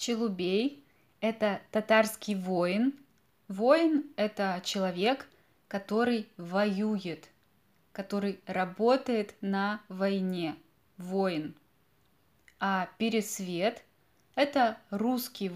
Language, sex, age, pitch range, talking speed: Russian, female, 20-39, 190-225 Hz, 70 wpm